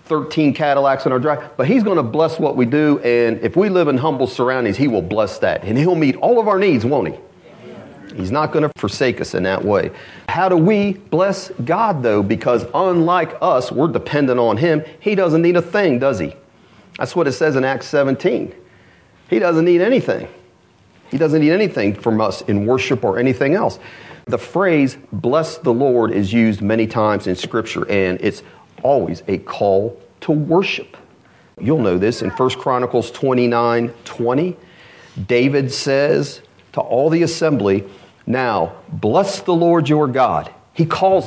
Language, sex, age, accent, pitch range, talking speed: English, male, 40-59, American, 115-160 Hz, 180 wpm